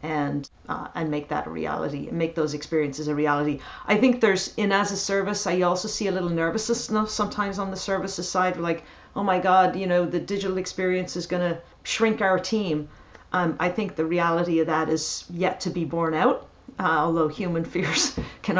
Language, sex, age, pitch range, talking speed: English, female, 50-69, 155-190 Hz, 205 wpm